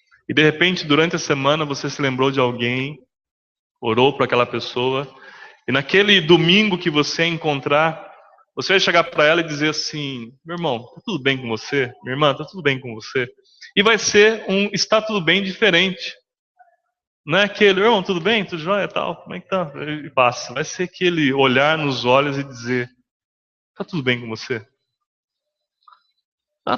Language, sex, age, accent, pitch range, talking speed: English, male, 20-39, Brazilian, 120-175 Hz, 180 wpm